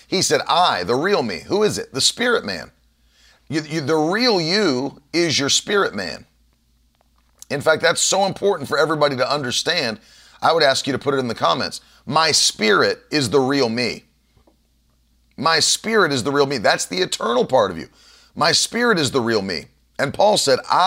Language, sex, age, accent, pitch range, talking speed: English, male, 40-59, American, 110-165 Hz, 185 wpm